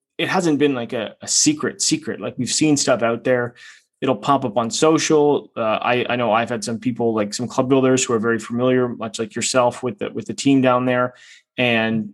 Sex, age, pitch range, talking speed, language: male, 20-39, 115-135 Hz, 225 wpm, English